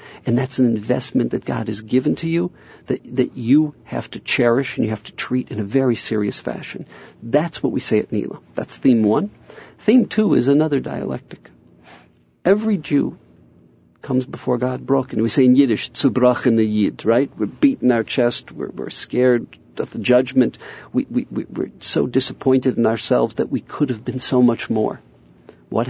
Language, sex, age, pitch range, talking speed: English, male, 50-69, 115-140 Hz, 190 wpm